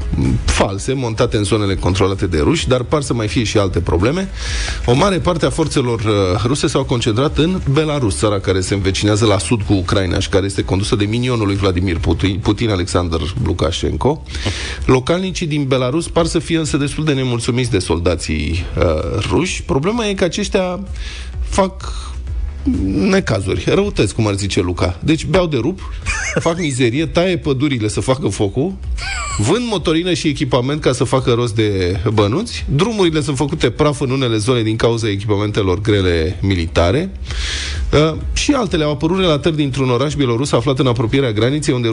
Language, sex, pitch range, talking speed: Romanian, male, 95-150 Hz, 170 wpm